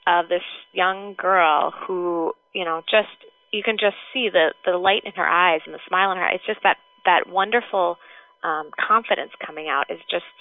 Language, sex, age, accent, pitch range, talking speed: English, female, 20-39, American, 175-225 Hz, 195 wpm